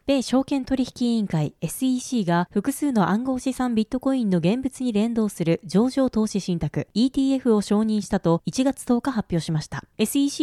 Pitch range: 190-255 Hz